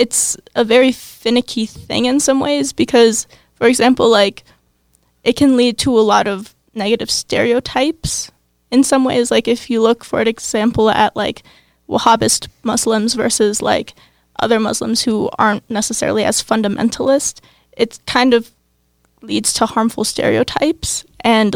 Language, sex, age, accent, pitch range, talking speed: English, female, 10-29, American, 215-245 Hz, 145 wpm